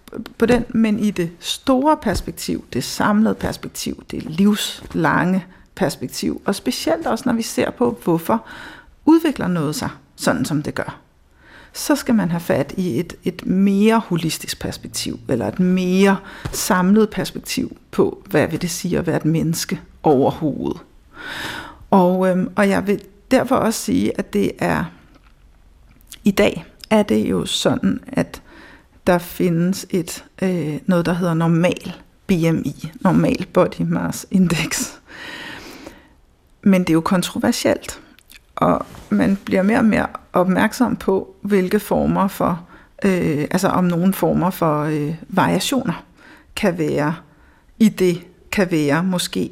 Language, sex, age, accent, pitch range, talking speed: Danish, female, 60-79, native, 175-230 Hz, 135 wpm